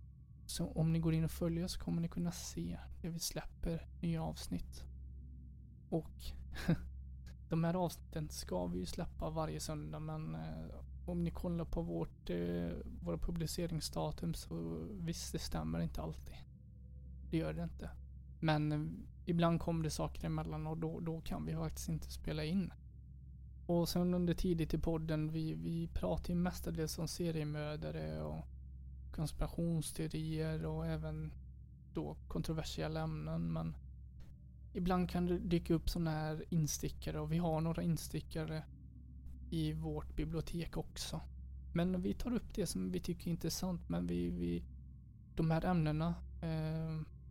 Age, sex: 20-39, male